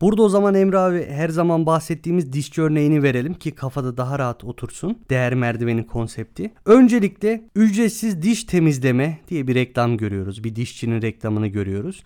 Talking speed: 155 wpm